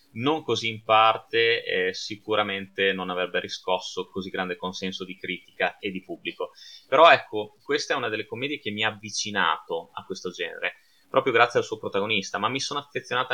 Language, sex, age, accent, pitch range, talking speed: Italian, male, 20-39, native, 95-150 Hz, 180 wpm